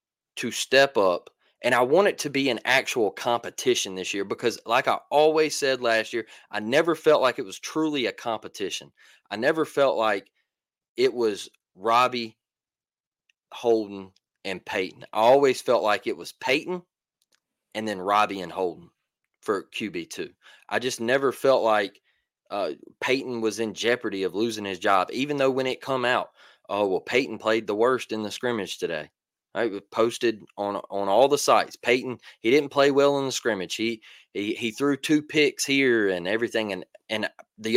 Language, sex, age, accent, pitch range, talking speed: English, male, 20-39, American, 115-155 Hz, 180 wpm